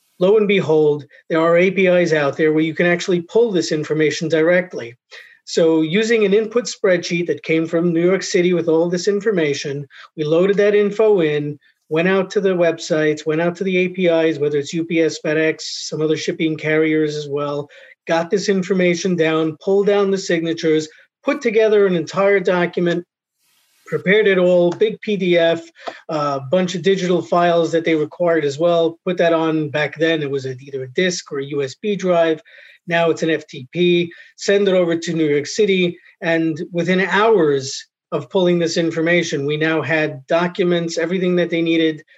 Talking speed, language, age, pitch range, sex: 175 wpm, English, 40-59, 155-185 Hz, male